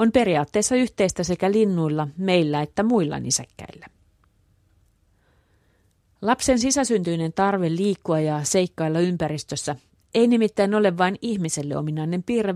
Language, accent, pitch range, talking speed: Finnish, native, 145-200 Hz, 110 wpm